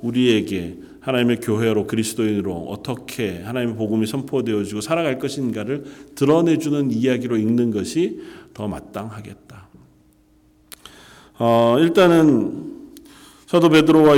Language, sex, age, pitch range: Korean, male, 40-59, 100-140 Hz